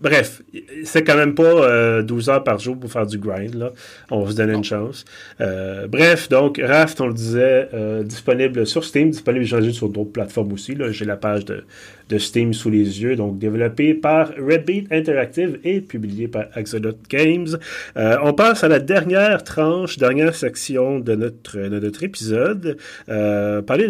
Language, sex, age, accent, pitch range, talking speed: French, male, 30-49, Canadian, 110-145 Hz, 185 wpm